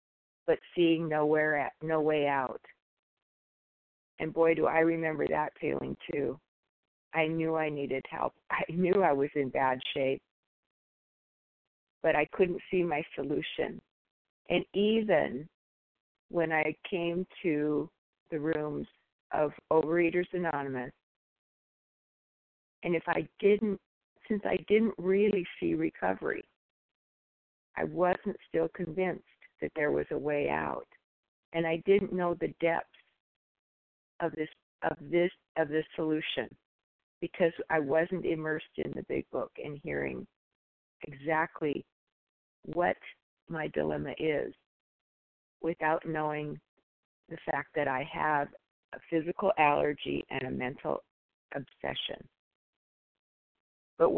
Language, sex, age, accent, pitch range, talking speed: English, female, 40-59, American, 145-175 Hz, 120 wpm